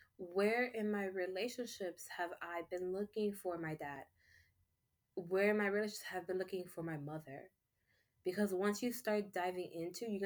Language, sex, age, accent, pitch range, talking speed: English, female, 20-39, American, 155-200 Hz, 170 wpm